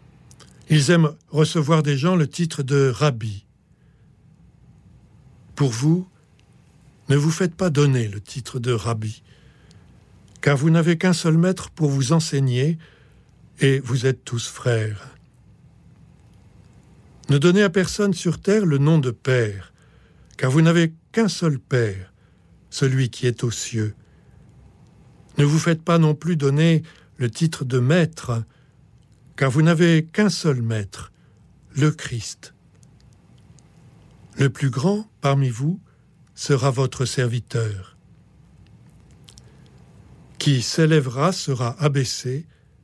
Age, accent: 60-79, French